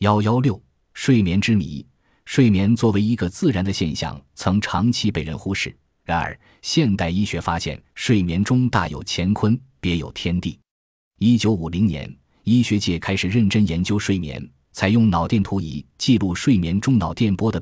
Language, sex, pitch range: Chinese, male, 85-110 Hz